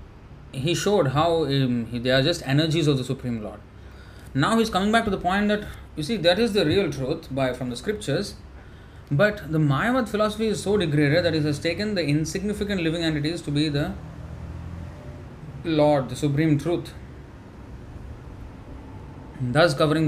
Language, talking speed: English, 165 wpm